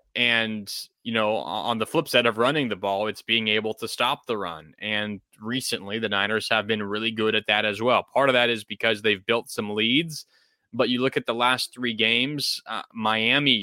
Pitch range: 110-125 Hz